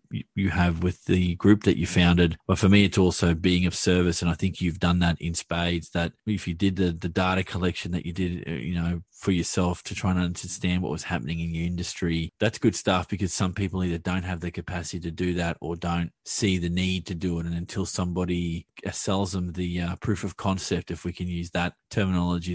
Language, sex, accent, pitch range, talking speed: English, male, Australian, 90-100 Hz, 230 wpm